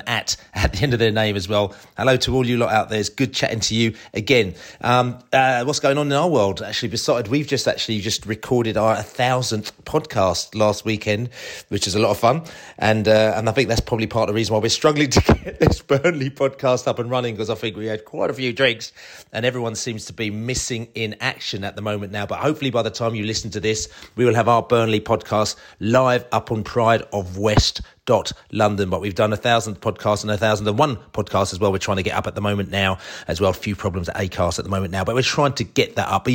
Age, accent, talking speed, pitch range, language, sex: 30-49, British, 260 wpm, 105-125 Hz, English, male